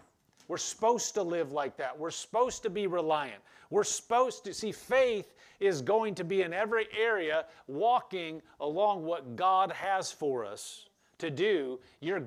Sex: male